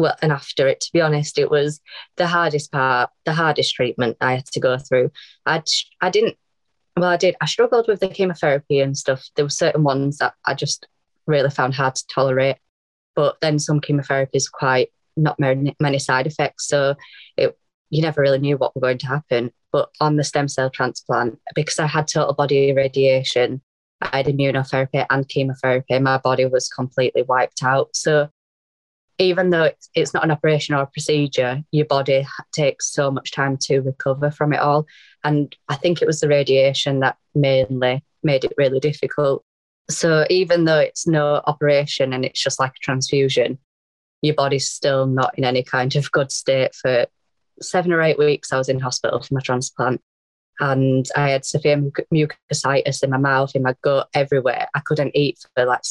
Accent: British